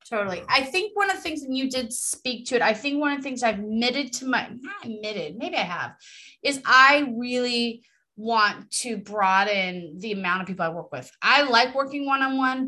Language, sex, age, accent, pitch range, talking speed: English, female, 30-49, American, 205-260 Hz, 220 wpm